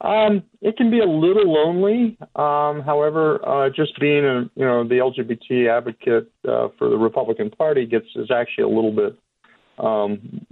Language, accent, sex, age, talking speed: English, American, male, 40-59, 170 wpm